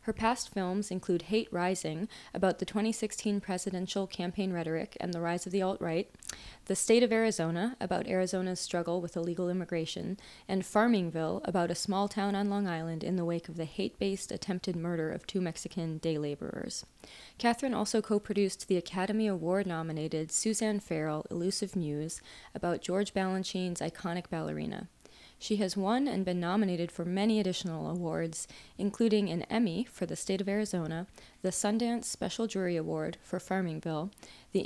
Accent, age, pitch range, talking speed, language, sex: American, 20-39, 170-205 Hz, 160 wpm, English, female